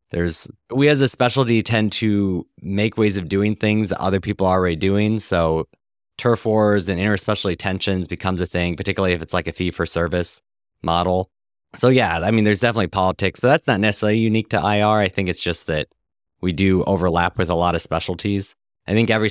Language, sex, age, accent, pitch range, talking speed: English, male, 20-39, American, 85-105 Hz, 205 wpm